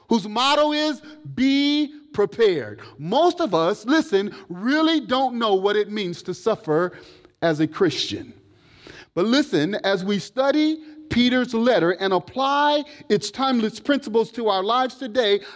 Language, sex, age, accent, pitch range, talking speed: English, male, 40-59, American, 180-270 Hz, 140 wpm